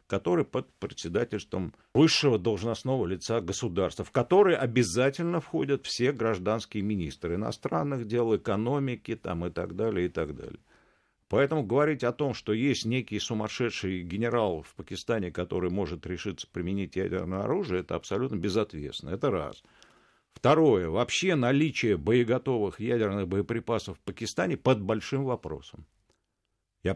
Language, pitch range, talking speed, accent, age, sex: Russian, 95-125 Hz, 120 wpm, native, 50-69, male